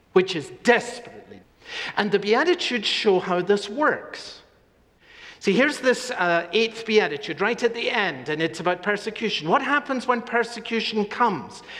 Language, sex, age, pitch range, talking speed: English, male, 50-69, 175-245 Hz, 145 wpm